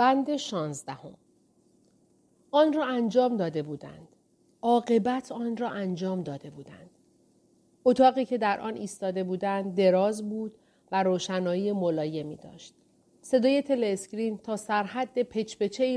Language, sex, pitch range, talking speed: Persian, female, 185-235 Hz, 115 wpm